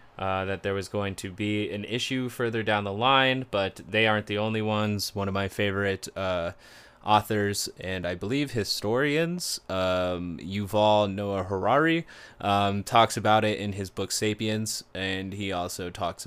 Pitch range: 100-115 Hz